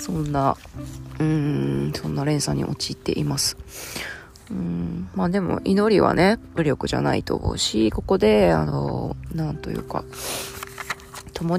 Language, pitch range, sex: Japanese, 130-210 Hz, female